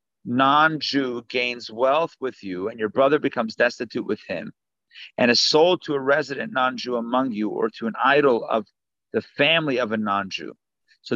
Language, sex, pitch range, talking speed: English, male, 135-175 Hz, 170 wpm